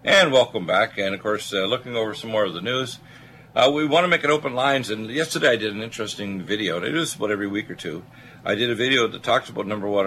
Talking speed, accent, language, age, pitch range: 280 wpm, American, English, 60-79, 95-120 Hz